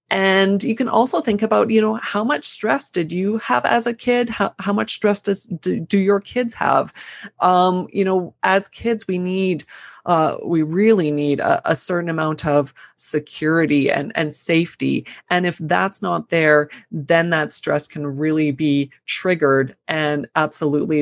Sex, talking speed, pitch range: female, 170 wpm, 150-190 Hz